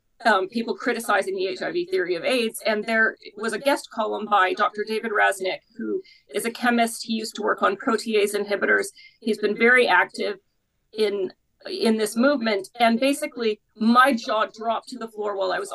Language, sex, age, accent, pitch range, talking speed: English, female, 40-59, American, 210-270 Hz, 185 wpm